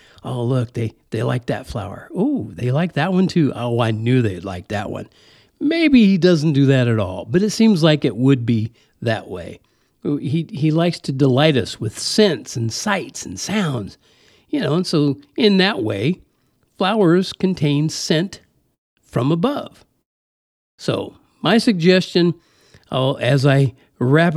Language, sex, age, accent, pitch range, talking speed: English, male, 50-69, American, 120-165 Hz, 165 wpm